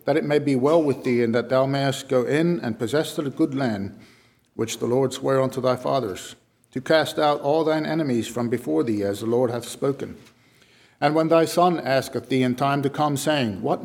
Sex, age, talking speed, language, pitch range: male, 50-69, 220 wpm, English, 120-155 Hz